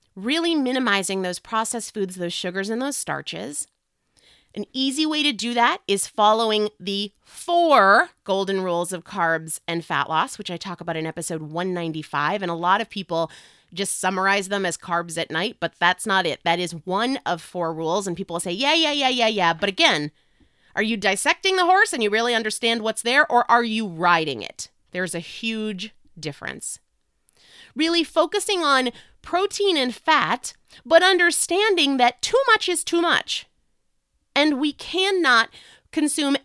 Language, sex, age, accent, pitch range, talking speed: English, female, 30-49, American, 190-300 Hz, 175 wpm